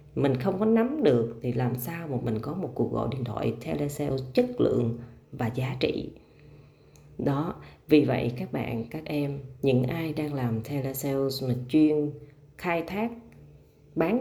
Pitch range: 120-150 Hz